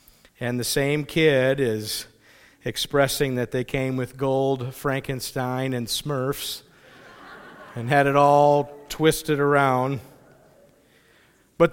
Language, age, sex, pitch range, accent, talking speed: English, 50-69, male, 125-145 Hz, American, 110 wpm